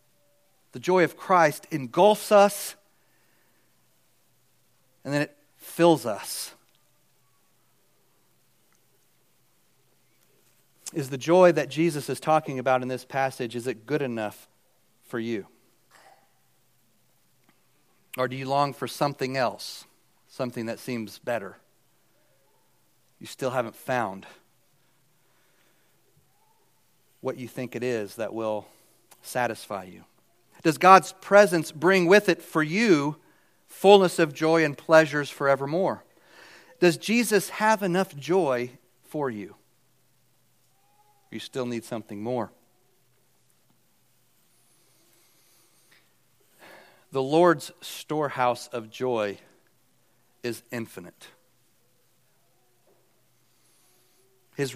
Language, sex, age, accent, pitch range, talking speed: English, male, 40-59, American, 120-160 Hz, 95 wpm